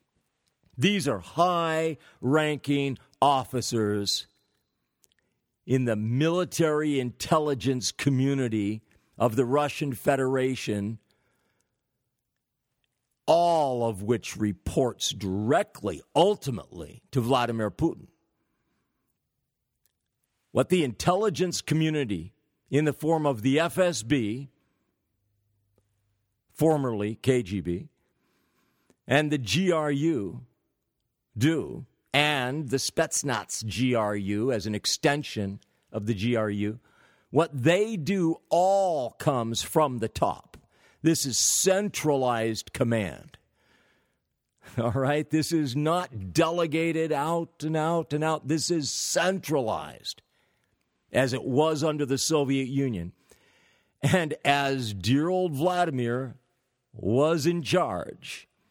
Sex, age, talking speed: male, 50-69, 90 wpm